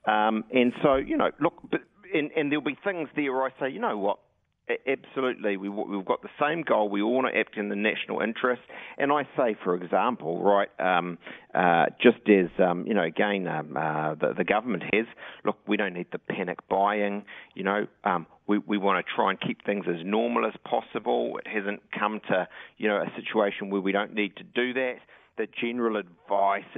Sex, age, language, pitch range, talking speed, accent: male, 40-59, English, 100-120 Hz, 210 wpm, Australian